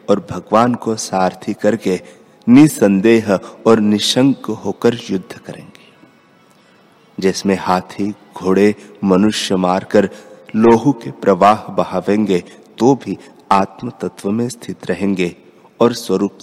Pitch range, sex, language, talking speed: 100-120 Hz, male, Hindi, 110 wpm